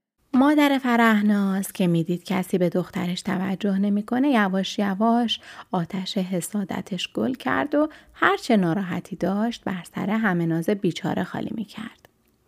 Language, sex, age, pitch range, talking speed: Persian, female, 30-49, 180-225 Hz, 125 wpm